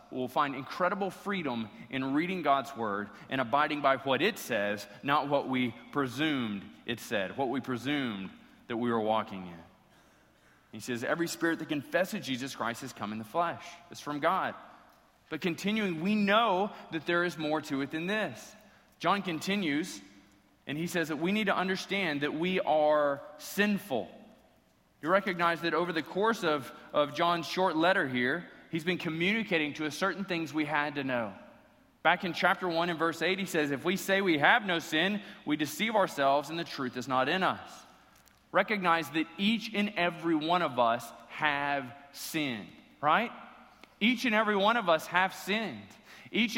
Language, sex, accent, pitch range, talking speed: English, male, American, 135-185 Hz, 180 wpm